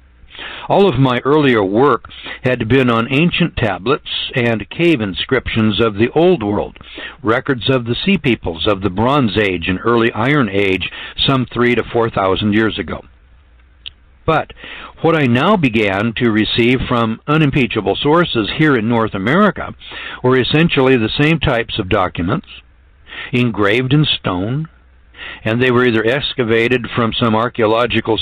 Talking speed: 145 wpm